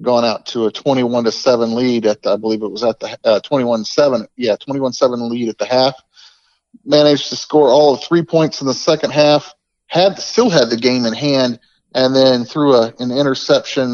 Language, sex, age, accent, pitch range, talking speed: English, male, 40-59, American, 115-140 Hz, 215 wpm